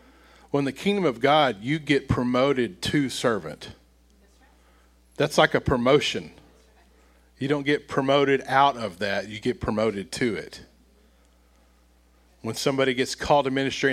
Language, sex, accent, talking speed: English, male, American, 140 wpm